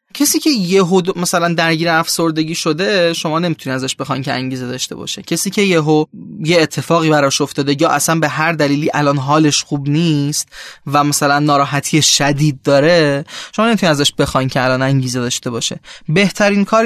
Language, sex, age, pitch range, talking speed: Persian, male, 20-39, 140-170 Hz, 165 wpm